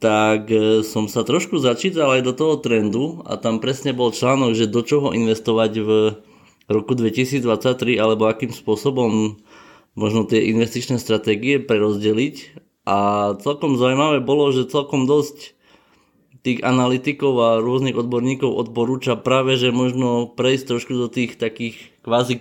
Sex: male